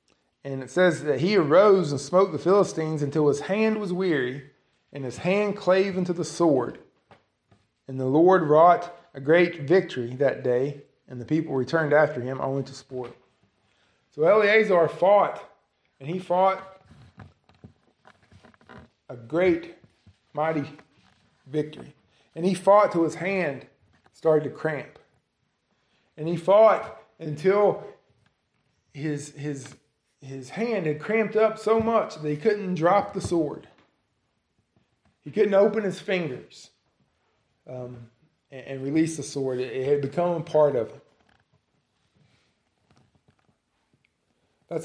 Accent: American